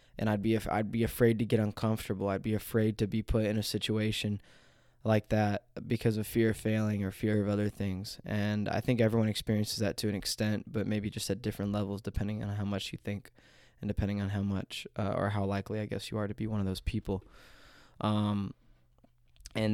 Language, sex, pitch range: English, male, 105-115 Hz